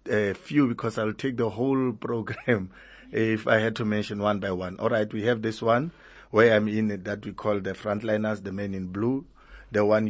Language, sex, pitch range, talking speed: English, male, 105-120 Hz, 215 wpm